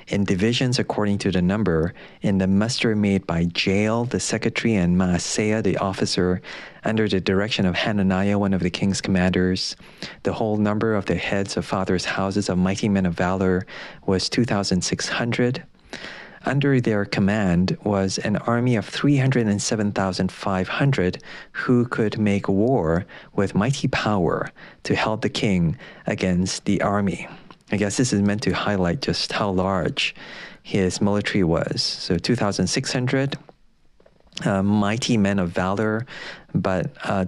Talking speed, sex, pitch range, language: 140 wpm, male, 95-110 Hz, English